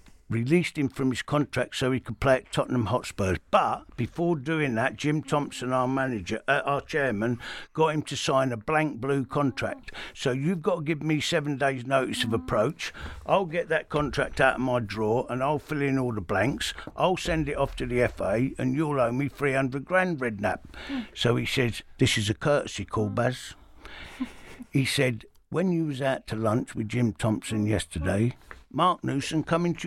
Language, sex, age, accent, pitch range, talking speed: English, male, 60-79, British, 125-185 Hz, 195 wpm